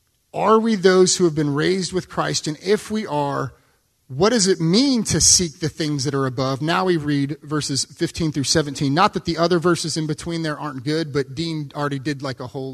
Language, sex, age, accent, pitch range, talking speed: English, male, 30-49, American, 140-175 Hz, 225 wpm